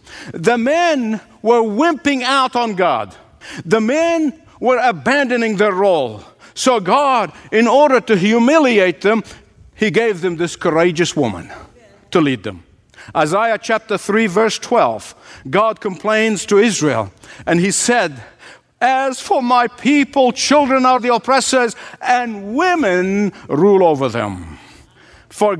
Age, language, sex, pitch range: 60-79, English, male, 175-250 Hz